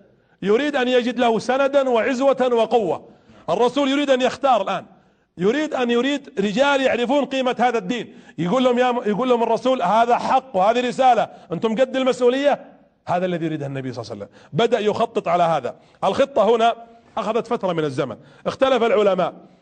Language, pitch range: Arabic, 165-245 Hz